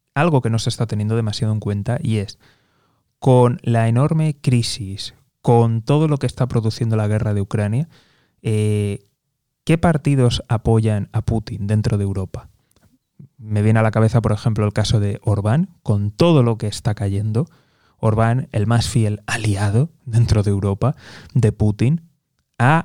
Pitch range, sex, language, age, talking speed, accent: 105-130 Hz, male, Spanish, 20-39, 165 wpm, Spanish